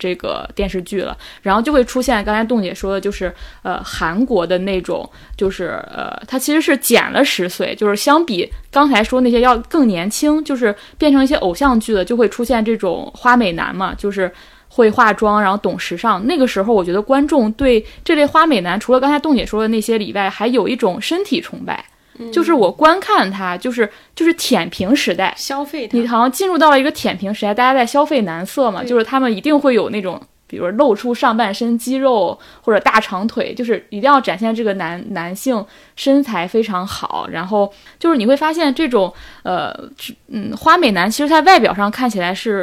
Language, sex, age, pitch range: Chinese, female, 20-39, 200-275 Hz